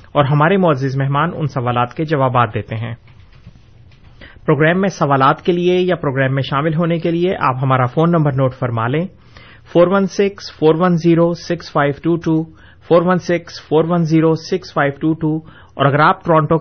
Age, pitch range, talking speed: 30-49, 135-170 Hz, 125 wpm